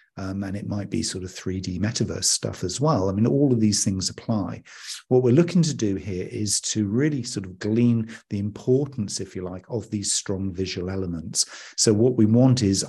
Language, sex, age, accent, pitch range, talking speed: English, male, 50-69, British, 95-115 Hz, 215 wpm